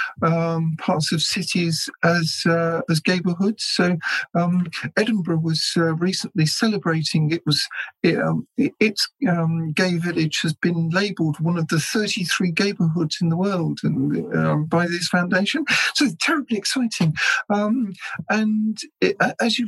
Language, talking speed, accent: English, 150 wpm, British